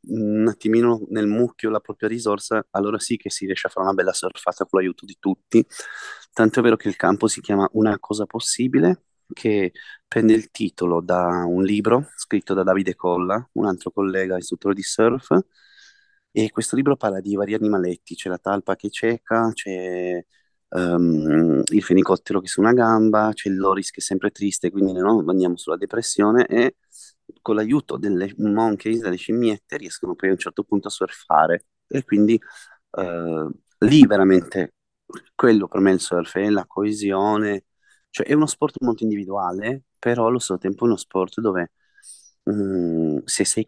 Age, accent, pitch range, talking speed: 20-39, native, 90-110 Hz, 175 wpm